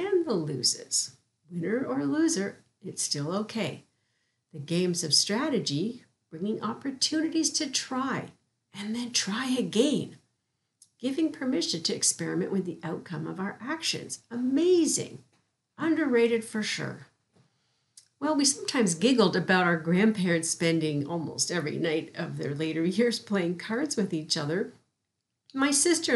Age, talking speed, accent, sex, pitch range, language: 50-69, 125 wpm, American, female, 165-245 Hz, English